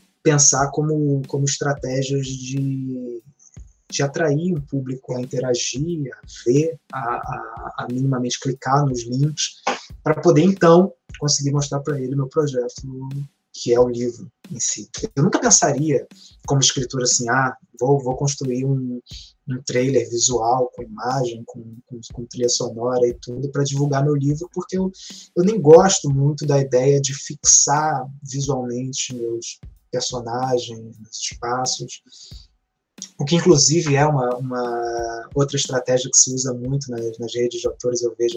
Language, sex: Portuguese, male